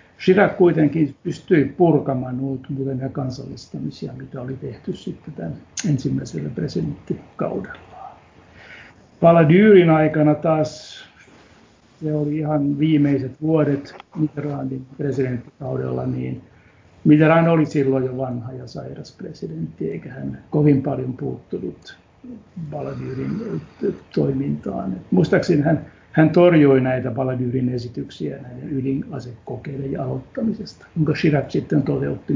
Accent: native